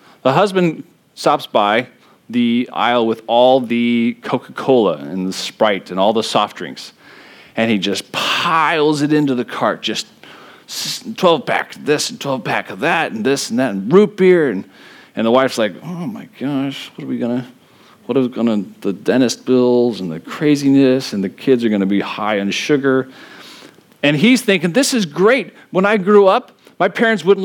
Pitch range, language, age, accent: 130-195 Hz, English, 40-59, American